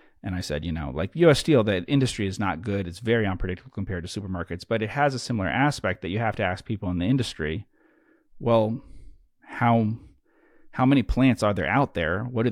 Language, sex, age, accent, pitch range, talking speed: English, male, 30-49, American, 90-110 Hz, 215 wpm